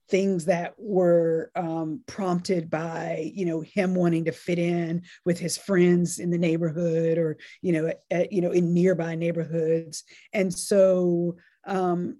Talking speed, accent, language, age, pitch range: 150 wpm, American, English, 40-59, 170-205 Hz